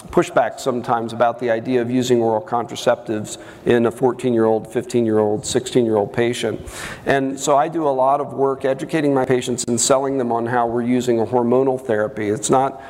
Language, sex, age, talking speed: English, male, 40-59, 205 wpm